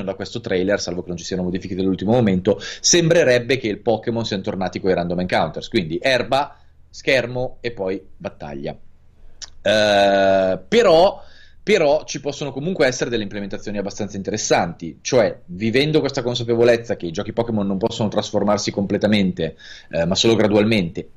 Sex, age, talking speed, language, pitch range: male, 30-49, 150 wpm, Italian, 90-120 Hz